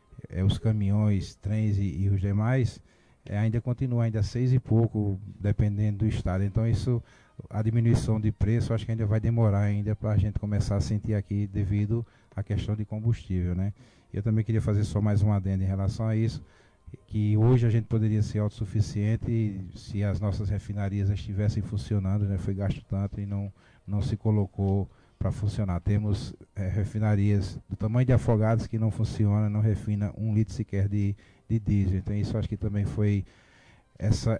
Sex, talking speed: male, 175 wpm